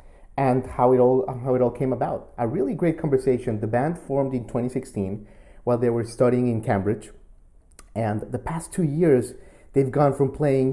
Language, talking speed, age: English, 185 wpm, 30-49